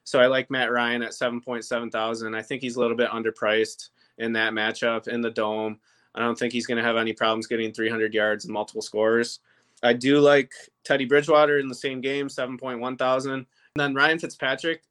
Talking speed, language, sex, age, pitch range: 210 wpm, English, male, 20-39, 110-130 Hz